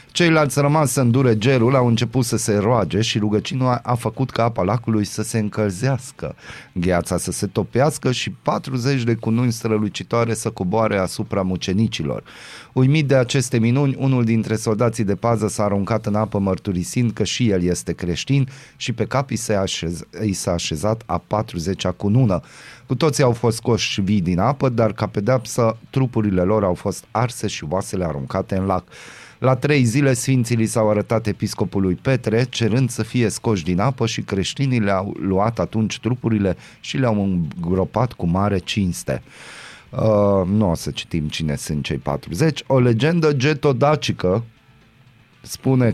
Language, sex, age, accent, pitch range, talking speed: Romanian, male, 30-49, native, 100-125 Hz, 165 wpm